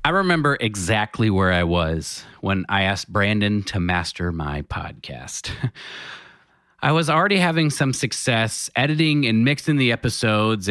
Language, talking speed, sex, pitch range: English, 140 wpm, male, 105-135 Hz